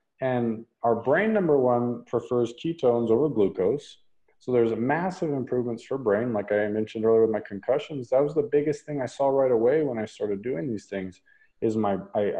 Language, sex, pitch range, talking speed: English, male, 115-150 Hz, 195 wpm